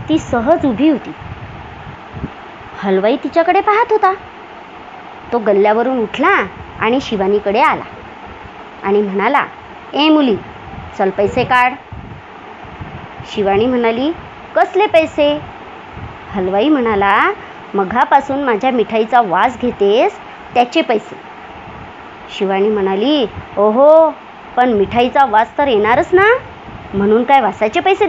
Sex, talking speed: male, 100 wpm